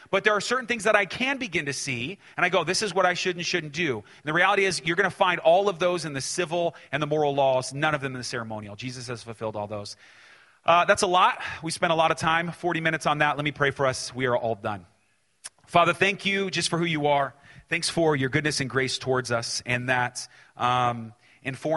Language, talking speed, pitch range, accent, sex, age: English, 260 wpm, 110-140 Hz, American, male, 30-49